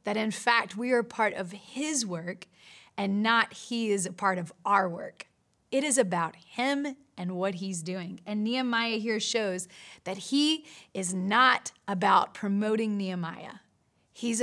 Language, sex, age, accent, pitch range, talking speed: English, female, 30-49, American, 195-240 Hz, 160 wpm